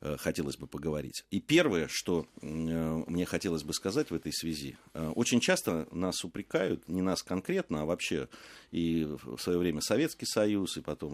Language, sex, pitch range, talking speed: Russian, male, 80-110 Hz, 160 wpm